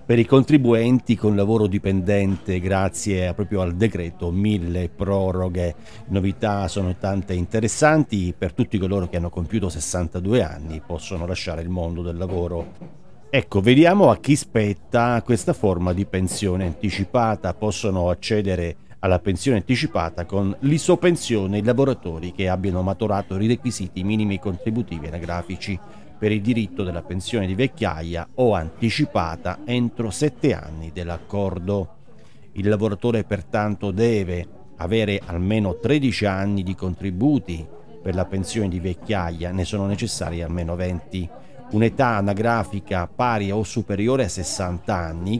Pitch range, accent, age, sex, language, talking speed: 90-115 Hz, native, 40-59, male, Italian, 130 wpm